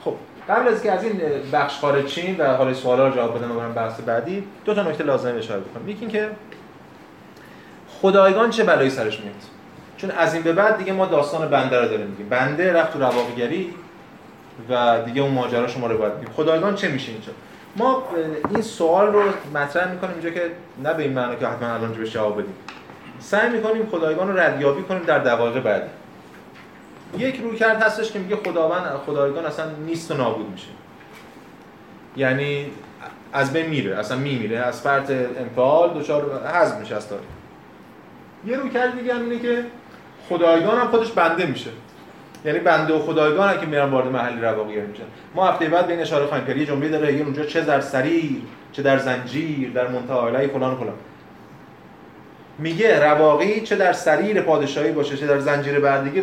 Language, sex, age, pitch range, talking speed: Persian, male, 30-49, 130-185 Hz, 175 wpm